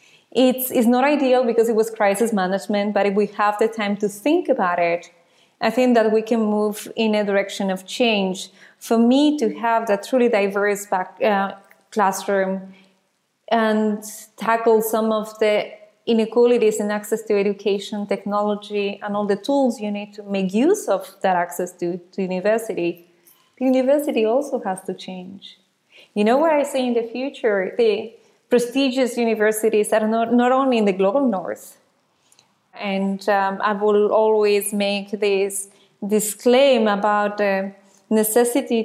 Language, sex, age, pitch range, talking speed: English, female, 20-39, 200-235 Hz, 160 wpm